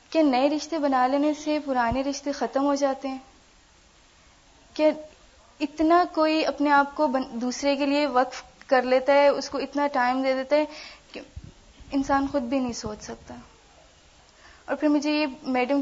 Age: 20-39